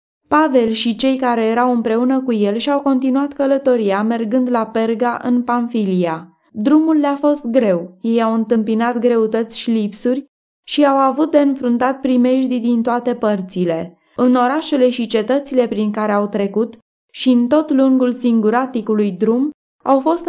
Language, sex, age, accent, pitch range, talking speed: Romanian, female, 20-39, native, 210-255 Hz, 150 wpm